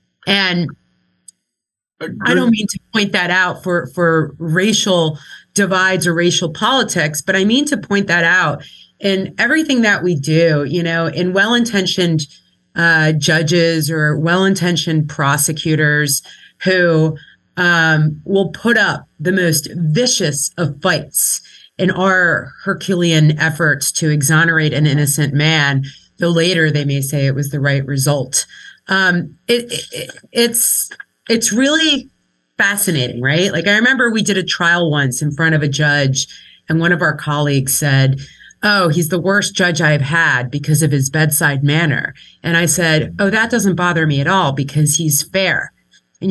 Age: 30-49